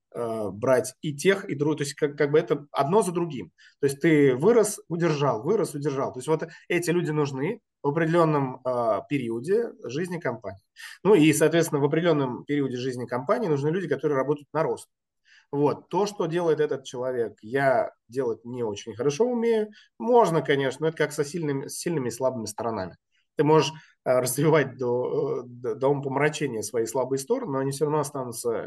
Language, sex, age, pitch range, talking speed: Russian, male, 20-39, 125-165 Hz, 180 wpm